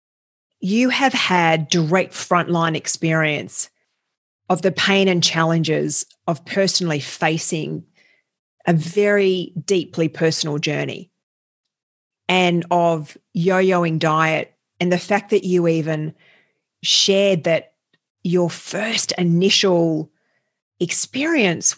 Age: 40-59